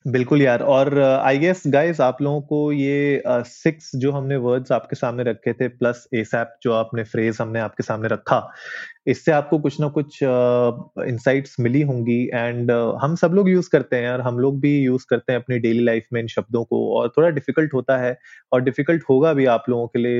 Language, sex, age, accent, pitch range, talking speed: Hindi, male, 20-39, native, 120-145 Hz, 215 wpm